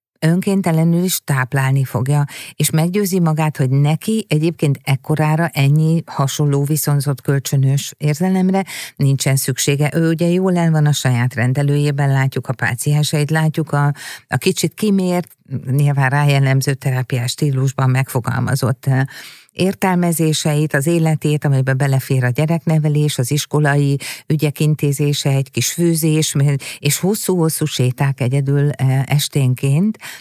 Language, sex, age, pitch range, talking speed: Hungarian, female, 50-69, 135-165 Hz, 115 wpm